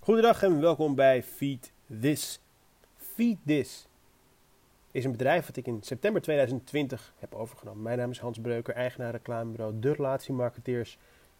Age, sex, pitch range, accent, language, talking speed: 30-49, male, 120-150 Hz, Dutch, Dutch, 145 wpm